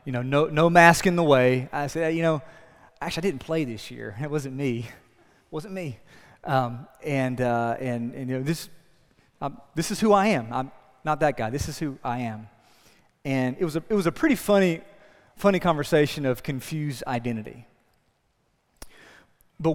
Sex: male